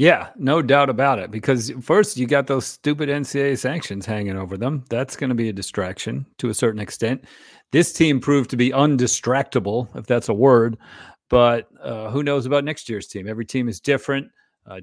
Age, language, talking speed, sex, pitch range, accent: 50-69, English, 195 wpm, male, 110-130 Hz, American